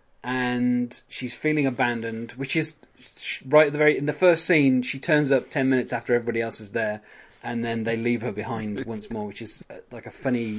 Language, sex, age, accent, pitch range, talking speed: English, male, 30-49, British, 120-150 Hz, 210 wpm